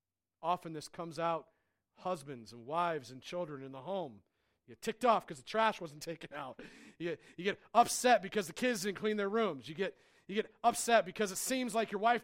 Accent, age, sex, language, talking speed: American, 40-59, male, English, 220 wpm